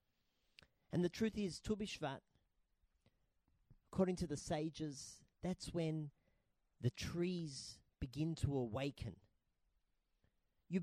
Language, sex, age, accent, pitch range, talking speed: English, male, 40-59, Australian, 110-165 Hz, 95 wpm